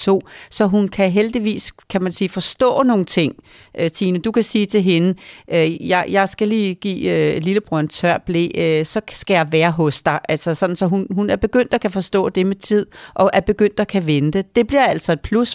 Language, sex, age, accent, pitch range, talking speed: Danish, female, 40-59, native, 180-225 Hz, 230 wpm